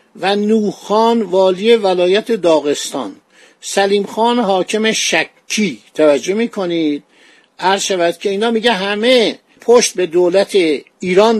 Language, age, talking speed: Persian, 50-69, 110 wpm